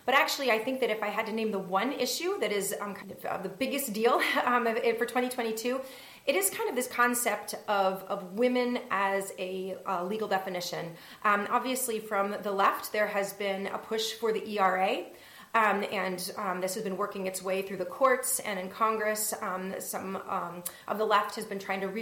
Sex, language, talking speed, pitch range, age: female, English, 210 wpm, 195-245 Hz, 30-49